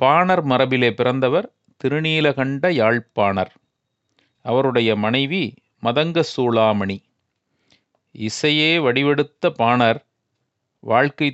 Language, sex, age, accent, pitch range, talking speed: Tamil, male, 40-59, native, 120-160 Hz, 70 wpm